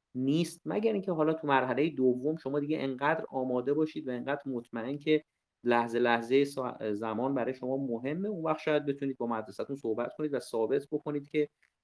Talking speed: 170 wpm